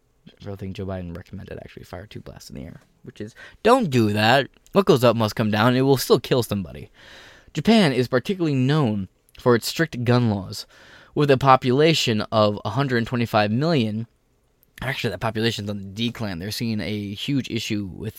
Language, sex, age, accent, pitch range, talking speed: English, male, 20-39, American, 105-130 Hz, 185 wpm